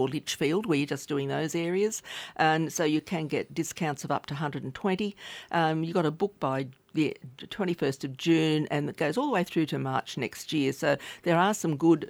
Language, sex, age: English, female, 50-69